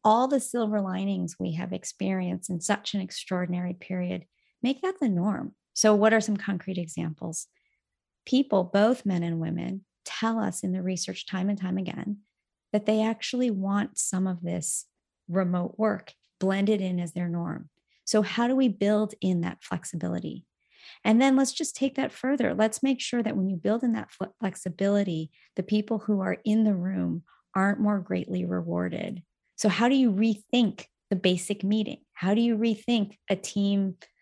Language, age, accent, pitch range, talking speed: English, 30-49, American, 185-220 Hz, 175 wpm